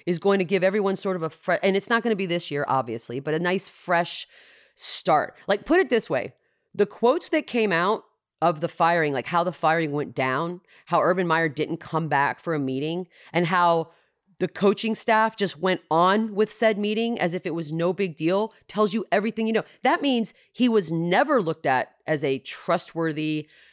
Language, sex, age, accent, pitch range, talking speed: English, female, 30-49, American, 160-205 Hz, 210 wpm